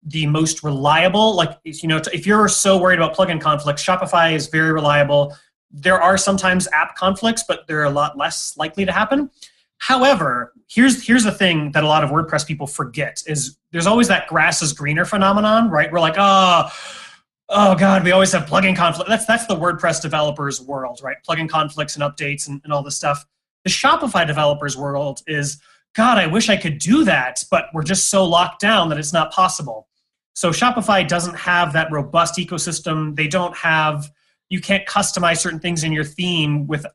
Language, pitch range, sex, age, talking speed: English, 150-195 Hz, male, 30-49, 190 wpm